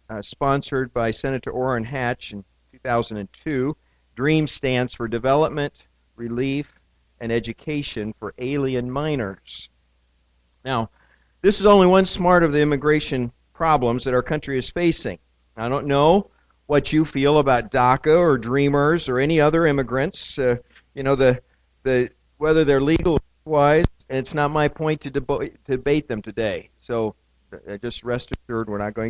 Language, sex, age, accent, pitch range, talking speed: English, male, 50-69, American, 95-145 Hz, 155 wpm